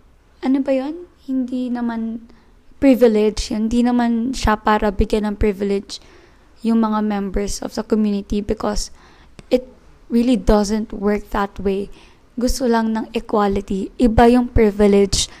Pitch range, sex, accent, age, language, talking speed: 210-245 Hz, female, native, 20-39, Filipino, 130 wpm